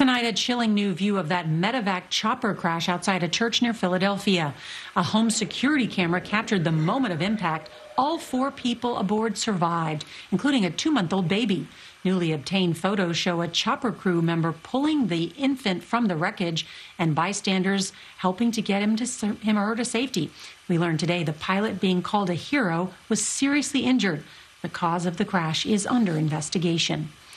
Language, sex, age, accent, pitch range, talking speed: English, female, 40-59, American, 175-225 Hz, 175 wpm